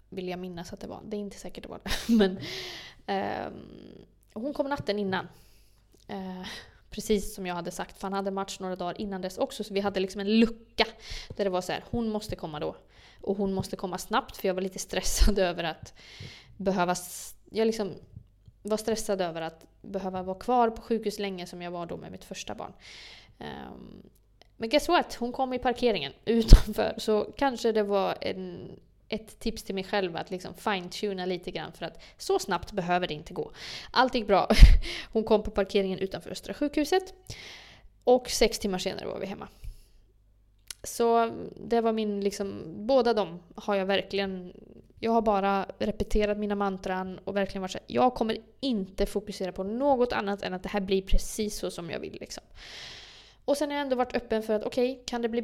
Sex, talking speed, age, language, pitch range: female, 200 wpm, 20-39, Swedish, 185-230 Hz